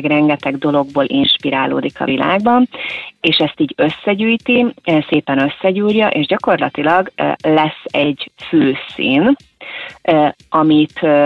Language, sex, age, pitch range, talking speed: Hungarian, female, 30-49, 145-175 Hz, 95 wpm